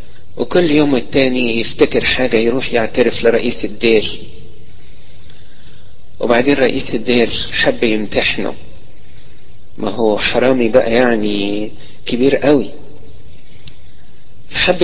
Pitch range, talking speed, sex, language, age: 105-130 Hz, 90 wpm, male, Arabic, 50-69